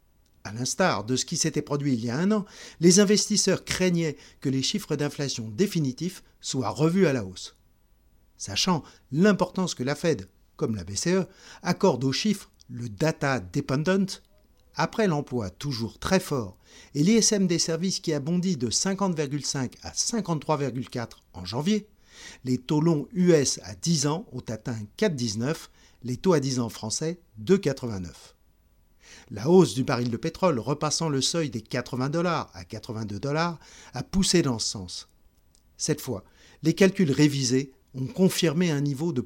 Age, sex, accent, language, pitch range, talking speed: 50-69, male, French, French, 120-170 Hz, 160 wpm